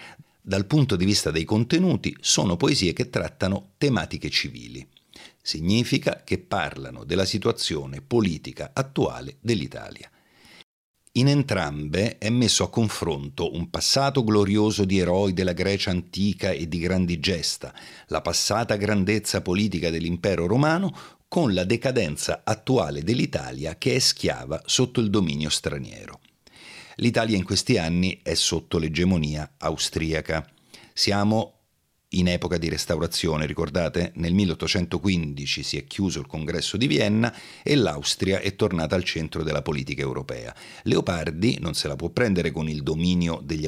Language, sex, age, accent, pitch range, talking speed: Italian, male, 50-69, native, 85-110 Hz, 135 wpm